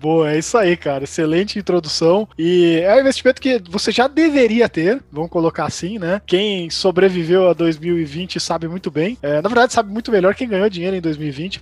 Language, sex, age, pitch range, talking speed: Portuguese, male, 20-39, 160-200 Hz, 195 wpm